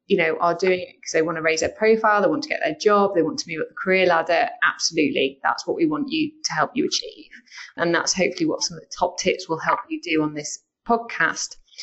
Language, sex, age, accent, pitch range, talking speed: English, female, 20-39, British, 165-220 Hz, 265 wpm